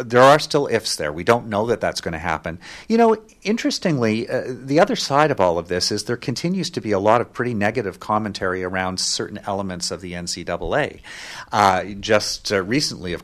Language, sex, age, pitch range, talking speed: English, male, 40-59, 95-125 Hz, 210 wpm